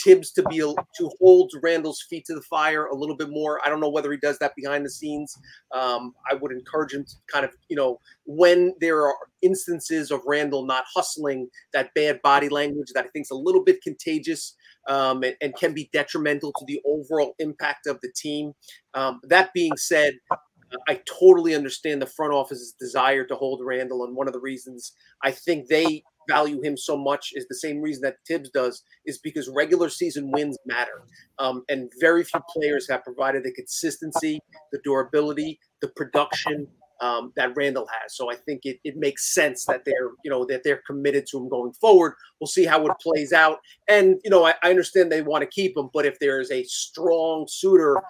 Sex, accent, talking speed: male, American, 205 wpm